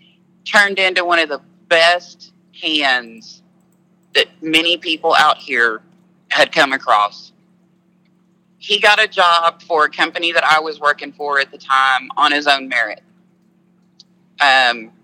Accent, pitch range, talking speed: American, 145-180 Hz, 140 wpm